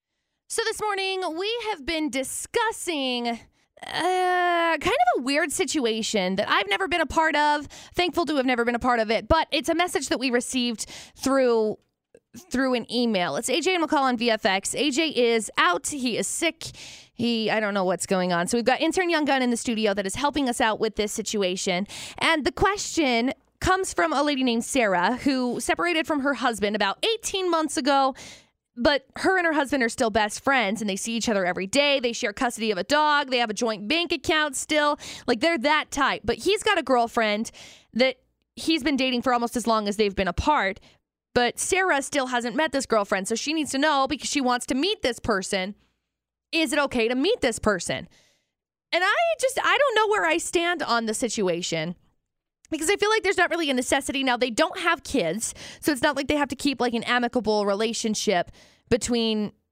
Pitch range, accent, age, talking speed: 225-320 Hz, American, 20-39, 210 wpm